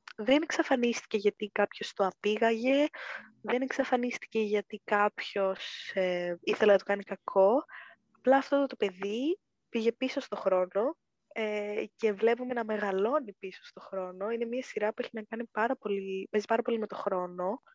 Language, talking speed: Greek, 155 wpm